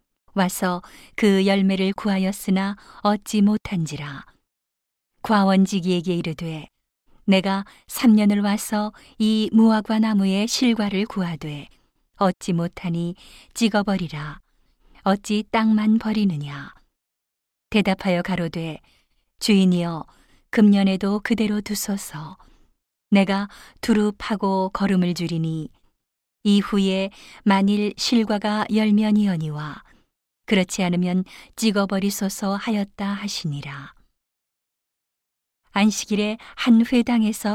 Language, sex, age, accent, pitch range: Korean, female, 40-59, native, 180-210 Hz